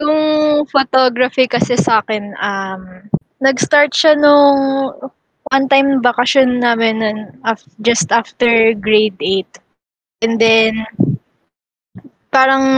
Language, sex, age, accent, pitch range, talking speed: English, female, 20-39, Filipino, 225-275 Hz, 100 wpm